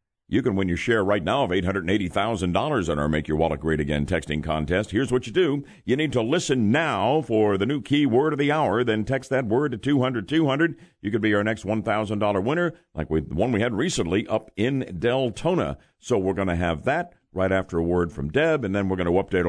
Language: English